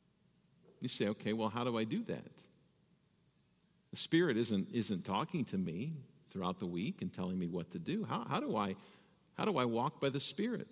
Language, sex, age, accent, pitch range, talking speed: English, male, 50-69, American, 110-150 Hz, 200 wpm